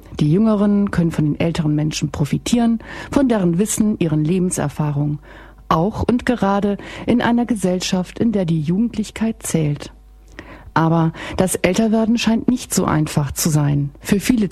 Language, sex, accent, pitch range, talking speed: German, female, German, 160-220 Hz, 145 wpm